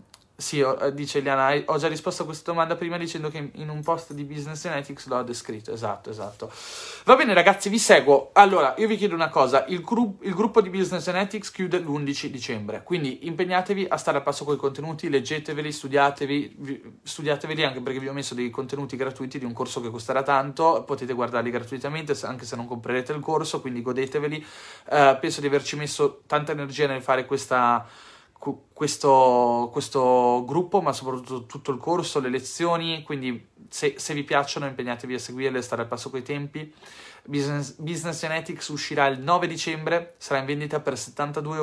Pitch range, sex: 130-150 Hz, male